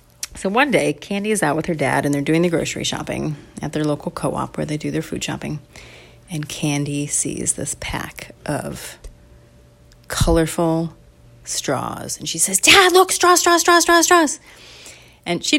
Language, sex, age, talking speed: English, female, 30-49, 175 wpm